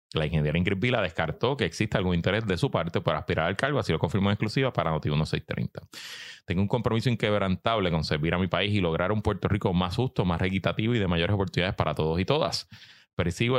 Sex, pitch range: male, 90-120 Hz